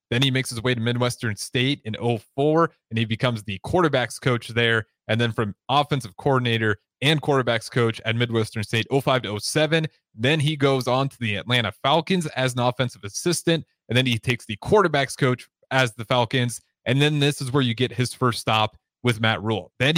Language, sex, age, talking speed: English, male, 30-49, 200 wpm